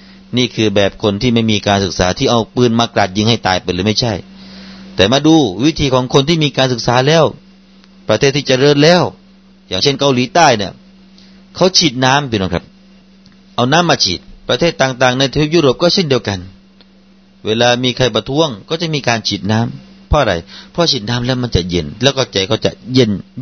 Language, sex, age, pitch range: Thai, male, 30-49, 105-160 Hz